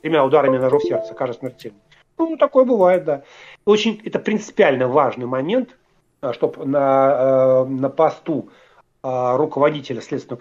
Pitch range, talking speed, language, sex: 140-220 Hz, 125 wpm, Russian, male